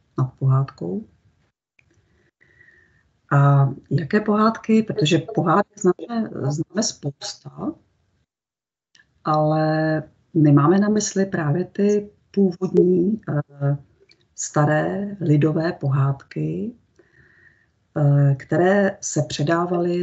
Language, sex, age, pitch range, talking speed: Czech, female, 40-59, 140-185 Hz, 70 wpm